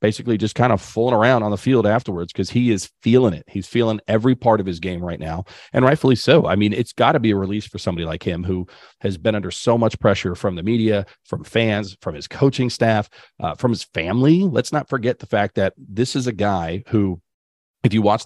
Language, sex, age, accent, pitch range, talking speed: English, male, 40-59, American, 95-115 Hz, 240 wpm